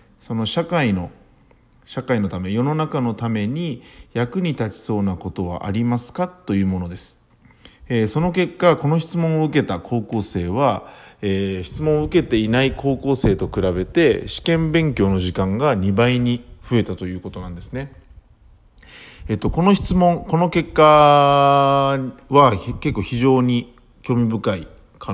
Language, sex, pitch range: Japanese, male, 100-145 Hz